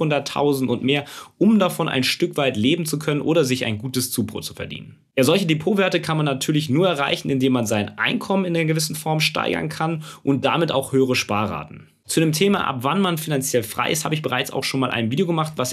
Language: German